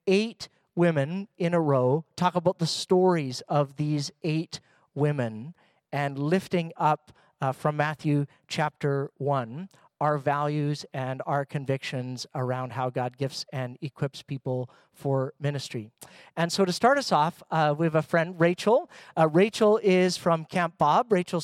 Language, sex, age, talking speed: English, male, 40-59, 150 wpm